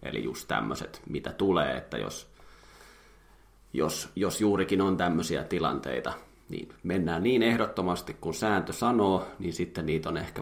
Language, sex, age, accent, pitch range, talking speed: Finnish, male, 30-49, native, 80-100 Hz, 145 wpm